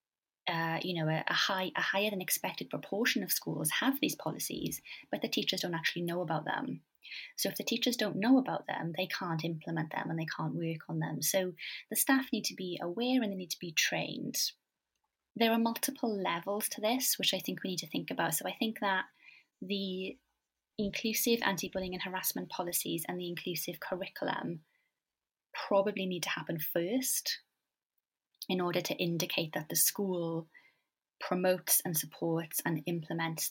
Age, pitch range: 20-39, 160-195 Hz